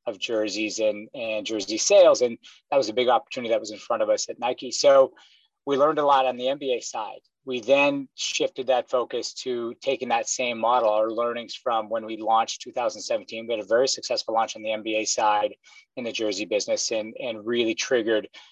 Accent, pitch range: American, 115-145 Hz